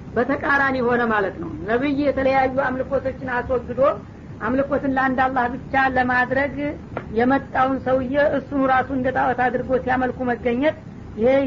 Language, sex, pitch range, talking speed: Amharic, female, 245-265 Hz, 110 wpm